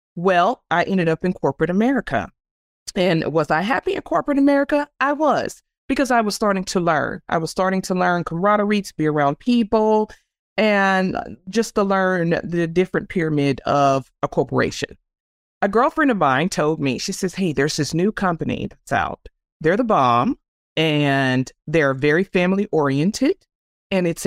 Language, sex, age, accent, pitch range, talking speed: English, female, 30-49, American, 155-210 Hz, 165 wpm